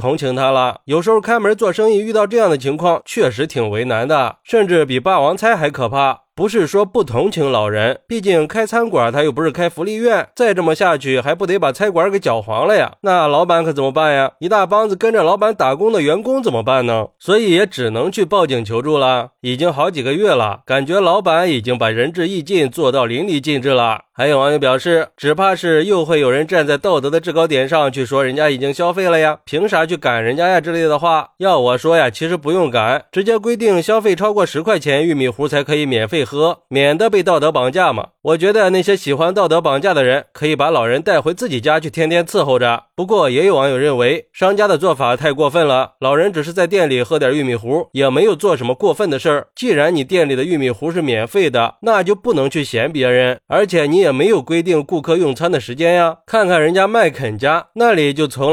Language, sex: Chinese, male